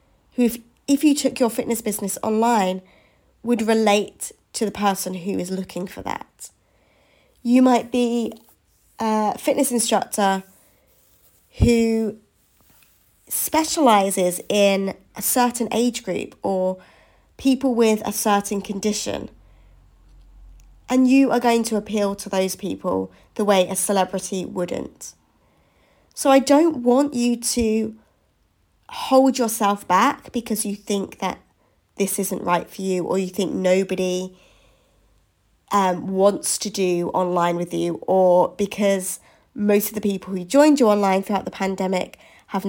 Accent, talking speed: British, 135 wpm